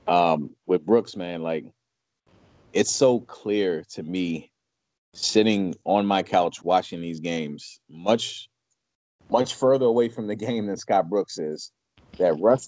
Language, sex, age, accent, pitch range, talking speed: English, male, 30-49, American, 90-110 Hz, 140 wpm